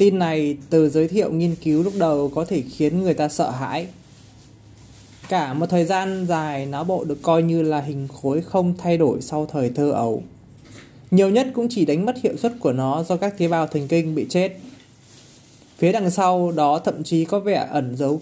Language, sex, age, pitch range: Vietnamese, male, 20-39, 140-190 Hz